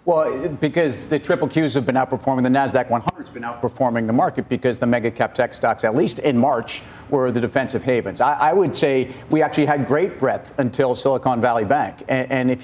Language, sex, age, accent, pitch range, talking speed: English, male, 50-69, American, 130-155 Hz, 220 wpm